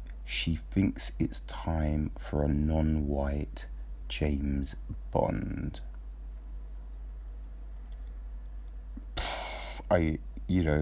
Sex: male